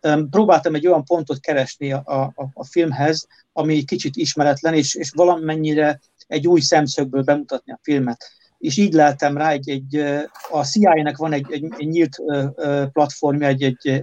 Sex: male